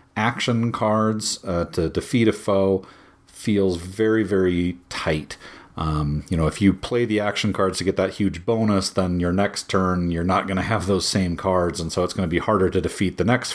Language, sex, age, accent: English, male, 40-59, American